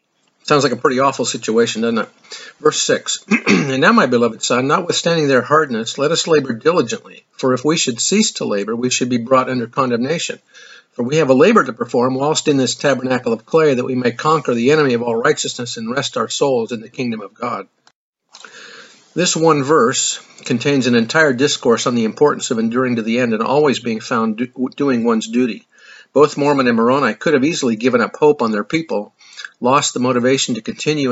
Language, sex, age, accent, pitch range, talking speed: English, male, 50-69, American, 120-150 Hz, 205 wpm